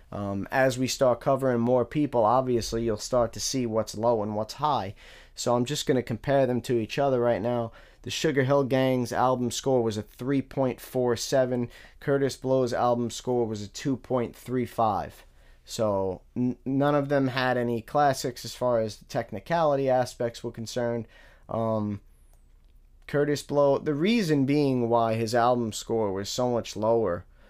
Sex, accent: male, American